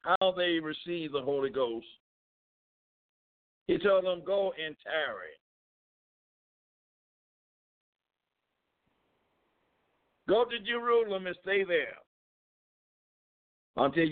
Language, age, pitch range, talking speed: English, 60-79, 165-200 Hz, 80 wpm